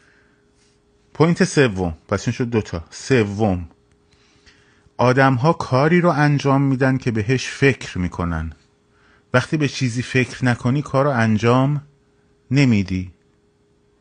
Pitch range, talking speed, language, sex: 95-135 Hz, 105 wpm, Persian, male